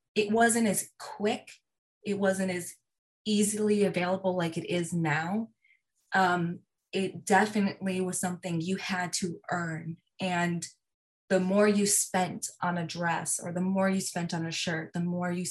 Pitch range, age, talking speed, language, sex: 170-200 Hz, 20-39, 160 wpm, English, female